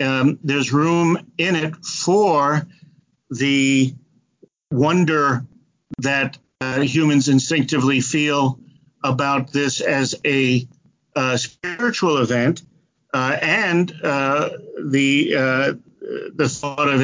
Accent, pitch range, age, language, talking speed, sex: American, 135-160 Hz, 50-69, English, 100 wpm, male